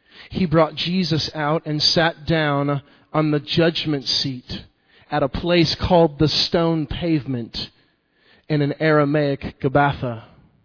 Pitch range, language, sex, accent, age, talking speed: 140-170 Hz, English, male, American, 40-59, 125 wpm